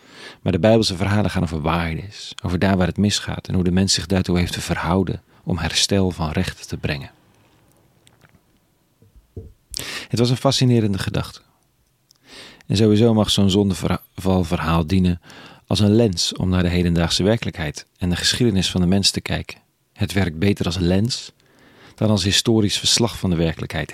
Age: 40-59